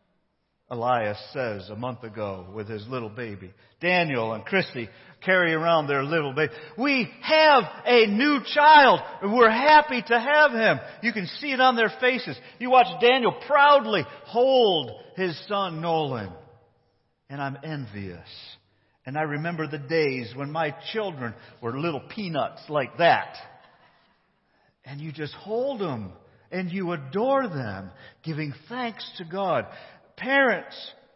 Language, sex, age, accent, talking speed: English, male, 50-69, American, 140 wpm